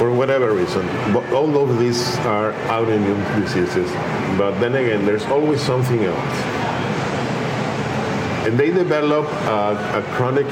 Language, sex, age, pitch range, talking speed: English, male, 50-69, 105-140 Hz, 125 wpm